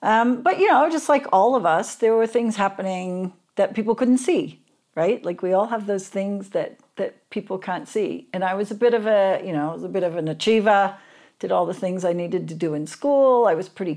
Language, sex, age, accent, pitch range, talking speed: English, female, 50-69, American, 165-225 Hz, 250 wpm